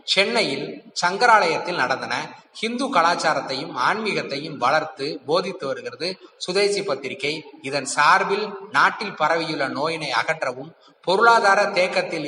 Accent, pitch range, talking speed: native, 145-200 Hz, 90 wpm